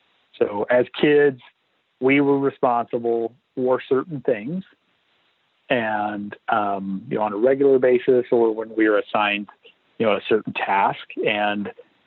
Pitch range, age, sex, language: 105-135 Hz, 40-59, male, English